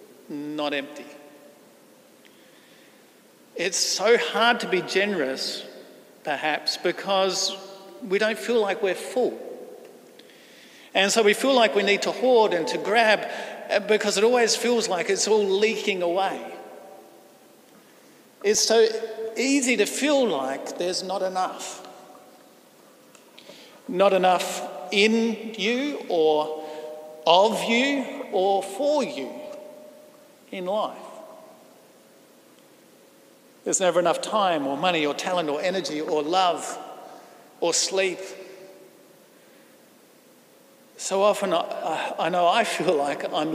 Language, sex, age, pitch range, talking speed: English, male, 50-69, 180-240 Hz, 110 wpm